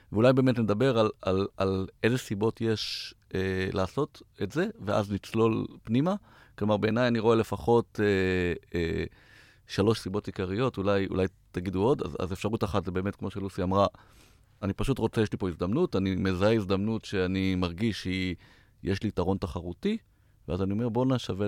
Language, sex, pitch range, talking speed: Hebrew, male, 95-115 Hz, 170 wpm